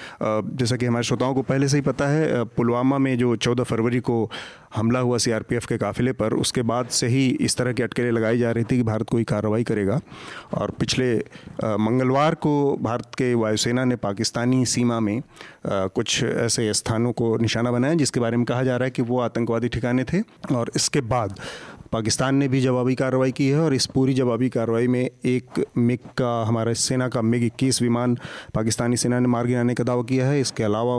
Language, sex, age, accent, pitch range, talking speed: Hindi, male, 30-49, native, 115-135 Hz, 200 wpm